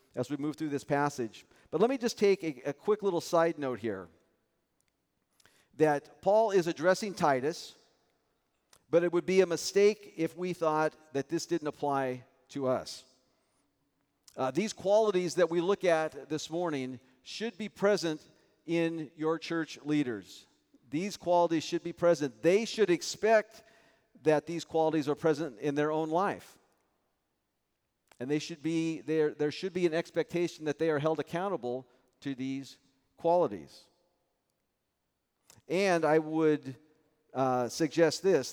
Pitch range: 140-175 Hz